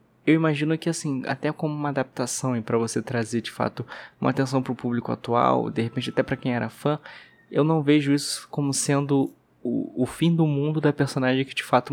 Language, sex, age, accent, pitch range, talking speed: Portuguese, male, 20-39, Brazilian, 110-135 Hz, 215 wpm